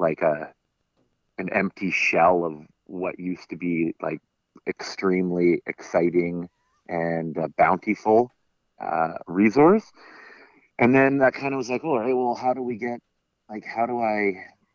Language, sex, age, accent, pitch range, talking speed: English, male, 30-49, American, 85-100 Hz, 155 wpm